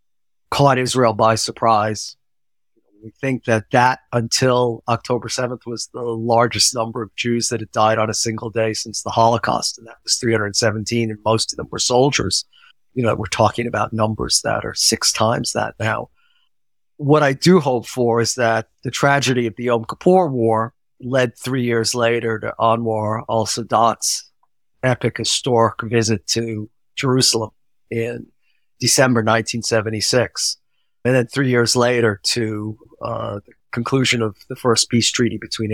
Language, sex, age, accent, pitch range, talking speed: English, male, 50-69, American, 115-130 Hz, 155 wpm